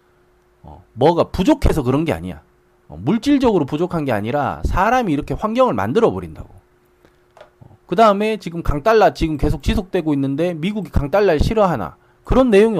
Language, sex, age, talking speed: English, male, 40-59, 135 wpm